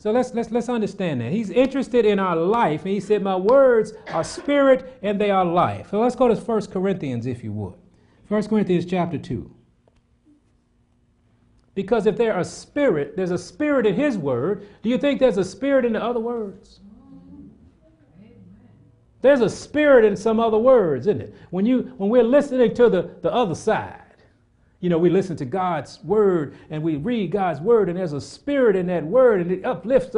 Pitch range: 150-230 Hz